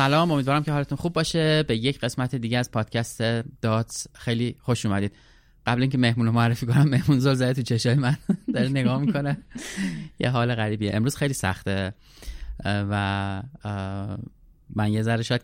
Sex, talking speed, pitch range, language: male, 160 wpm, 100-125 Hz, Persian